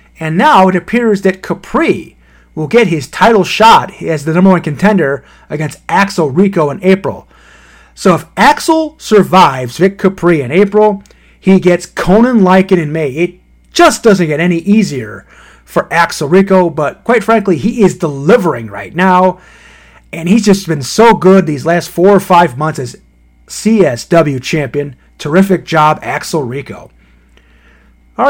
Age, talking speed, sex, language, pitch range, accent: 30-49, 155 wpm, male, English, 160-215 Hz, American